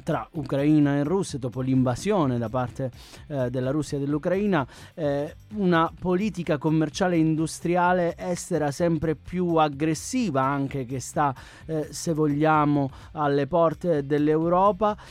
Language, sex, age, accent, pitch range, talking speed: Italian, male, 30-49, native, 140-175 Hz, 125 wpm